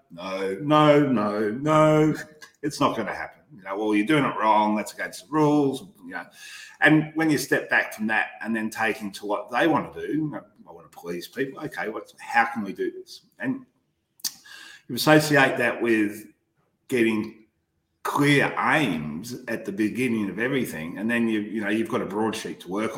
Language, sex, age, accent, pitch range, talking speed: English, male, 40-59, Australian, 105-155 Hz, 195 wpm